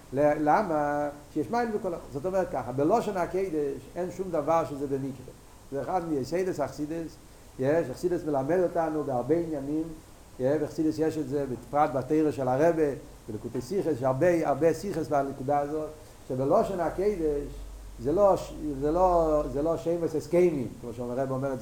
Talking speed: 165 wpm